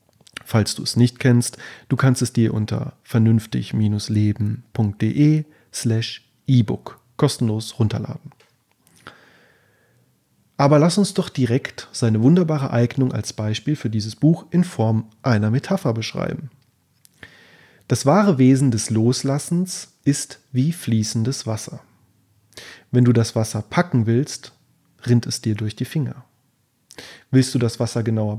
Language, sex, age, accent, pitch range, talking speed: German, male, 30-49, German, 115-140 Hz, 120 wpm